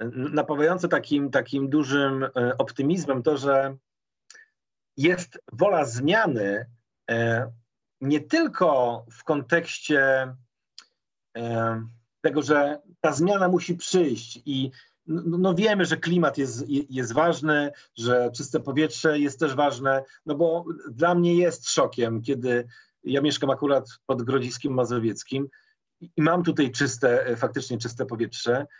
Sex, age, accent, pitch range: male, 40-59, native, 120-155 Hz